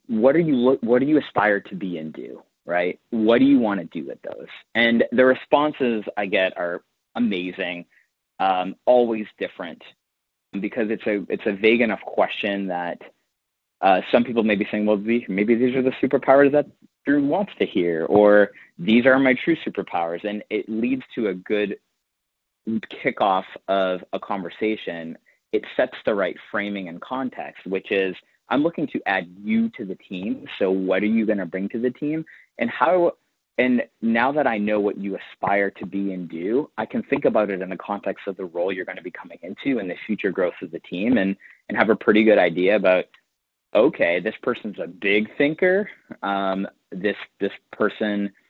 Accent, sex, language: American, male, English